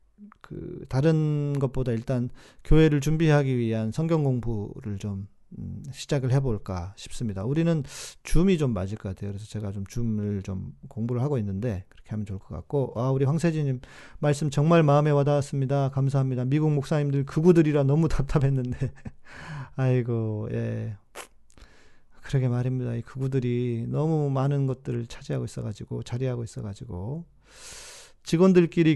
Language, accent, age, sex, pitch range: Korean, native, 40-59, male, 120-155 Hz